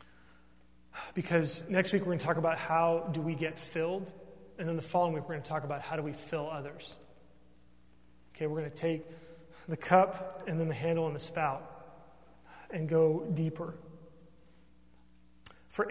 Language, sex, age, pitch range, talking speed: English, male, 30-49, 140-170 Hz, 175 wpm